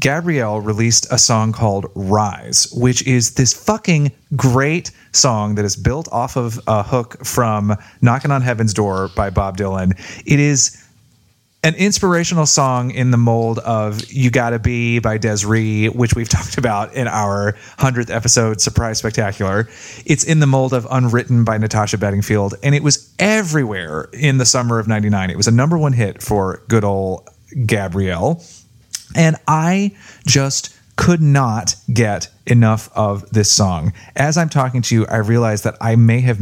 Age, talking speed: 30-49, 165 wpm